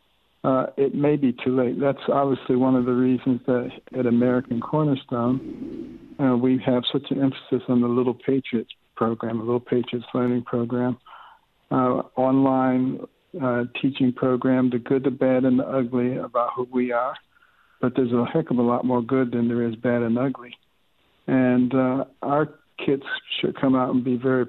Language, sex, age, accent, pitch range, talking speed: English, male, 60-79, American, 125-135 Hz, 180 wpm